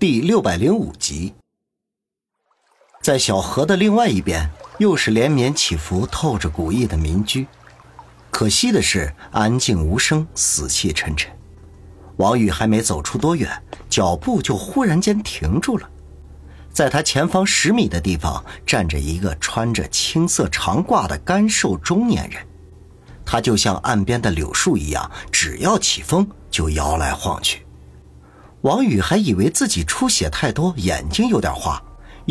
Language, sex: Chinese, male